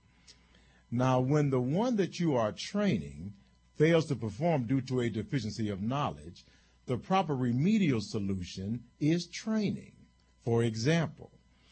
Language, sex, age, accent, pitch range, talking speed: English, male, 50-69, American, 105-145 Hz, 130 wpm